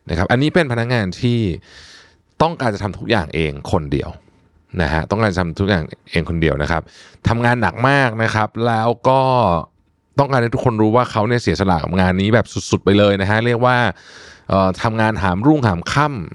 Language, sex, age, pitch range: Thai, male, 20-39, 90-115 Hz